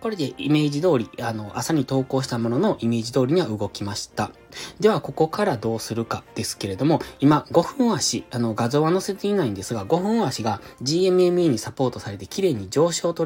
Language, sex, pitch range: Japanese, male, 110-165 Hz